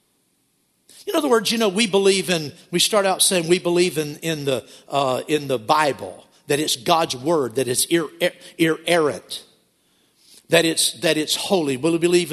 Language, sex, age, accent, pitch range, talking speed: English, male, 50-69, American, 165-225 Hz, 185 wpm